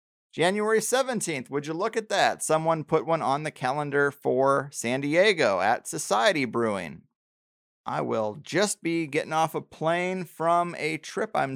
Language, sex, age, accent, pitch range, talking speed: English, male, 30-49, American, 125-165 Hz, 160 wpm